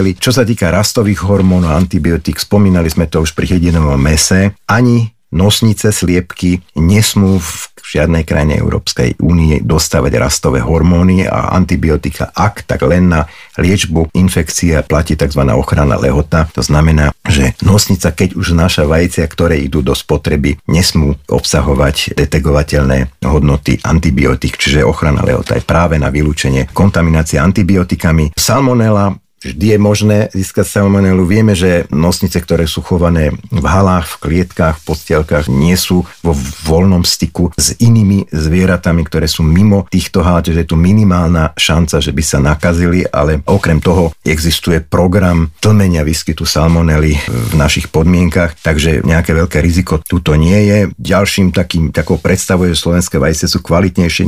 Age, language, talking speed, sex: 50-69, Slovak, 145 wpm, male